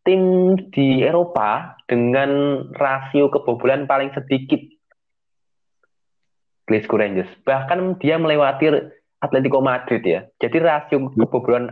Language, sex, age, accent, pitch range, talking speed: Indonesian, male, 20-39, native, 120-150 Hz, 95 wpm